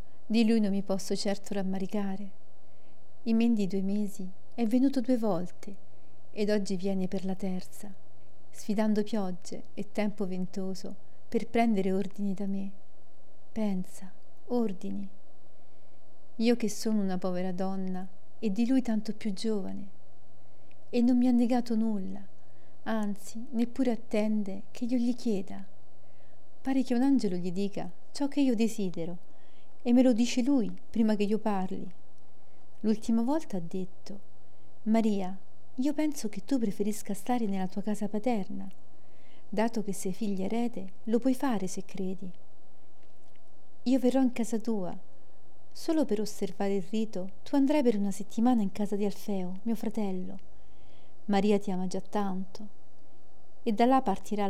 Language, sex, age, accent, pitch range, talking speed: Italian, female, 40-59, native, 195-230 Hz, 145 wpm